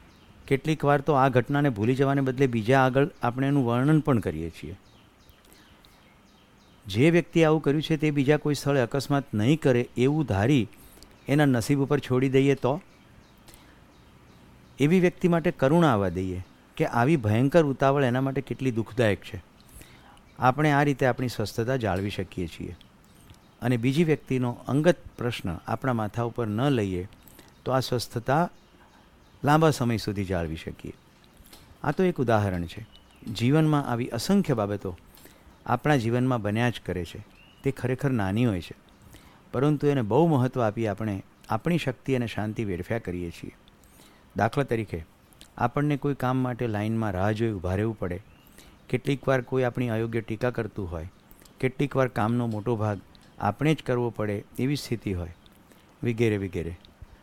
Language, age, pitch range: Gujarati, 50-69, 105-140 Hz